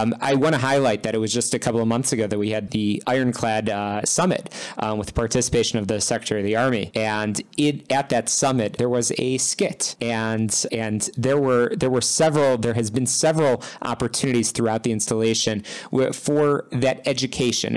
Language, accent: English, American